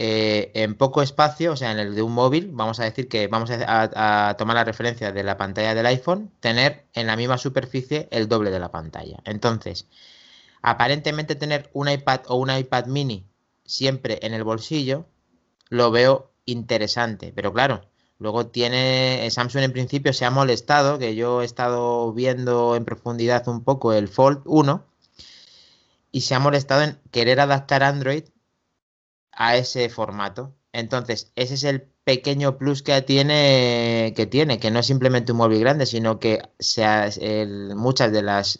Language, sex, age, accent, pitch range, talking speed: Spanish, male, 30-49, Spanish, 110-135 Hz, 170 wpm